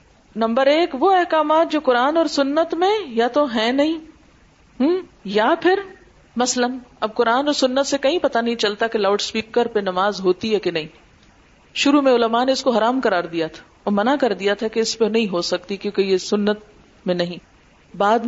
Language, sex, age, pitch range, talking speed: Urdu, female, 40-59, 215-300 Hz, 200 wpm